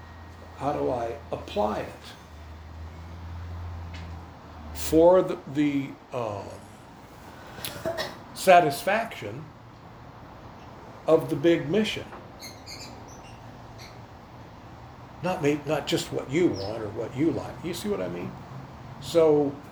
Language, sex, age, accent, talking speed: English, male, 60-79, American, 95 wpm